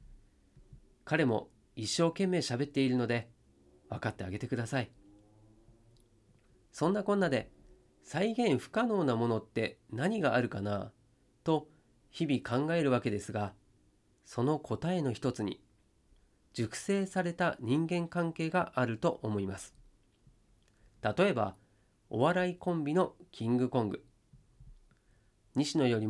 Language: Japanese